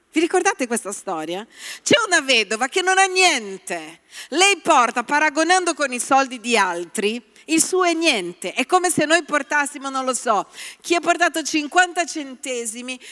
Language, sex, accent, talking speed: Italian, female, native, 165 wpm